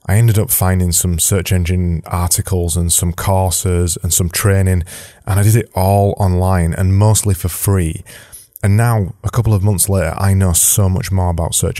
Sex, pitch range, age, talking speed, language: male, 90-110 Hz, 20-39, 195 wpm, English